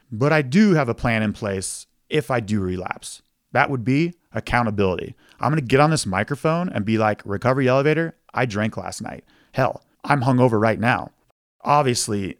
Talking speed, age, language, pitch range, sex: 180 wpm, 30-49, English, 105-150 Hz, male